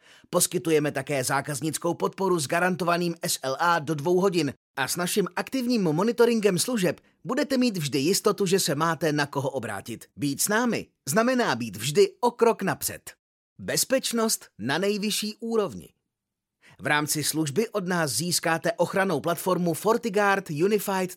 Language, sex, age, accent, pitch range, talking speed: Czech, male, 30-49, native, 150-195 Hz, 140 wpm